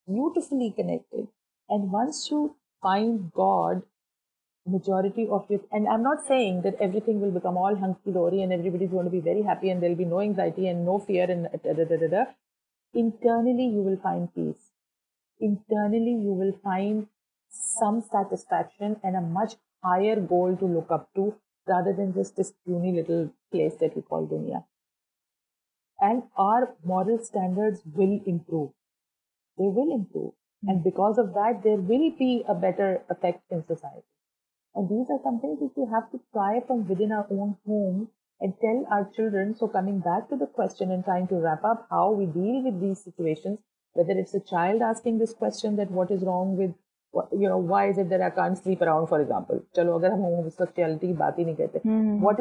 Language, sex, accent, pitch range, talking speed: English, female, Indian, 185-220 Hz, 175 wpm